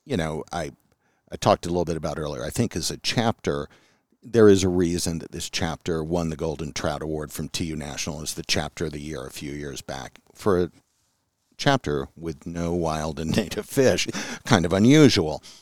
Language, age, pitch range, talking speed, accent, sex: English, 50-69, 75-95 Hz, 200 wpm, American, male